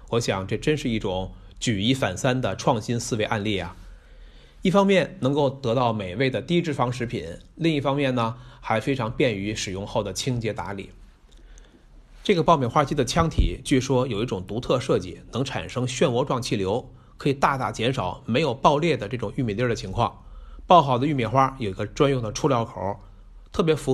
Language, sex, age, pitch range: Chinese, male, 30-49, 105-140 Hz